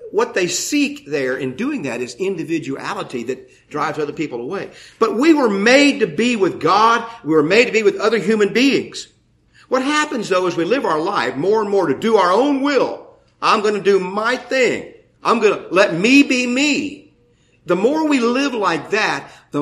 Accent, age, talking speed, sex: American, 50-69, 205 wpm, male